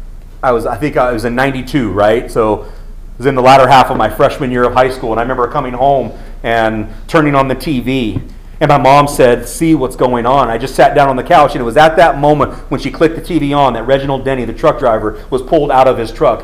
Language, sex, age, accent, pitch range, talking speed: English, male, 30-49, American, 120-155 Hz, 270 wpm